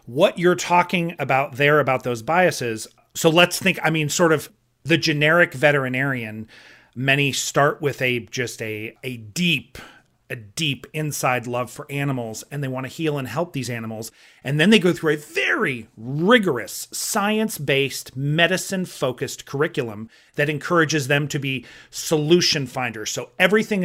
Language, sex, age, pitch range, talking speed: English, male, 40-59, 130-165 Hz, 155 wpm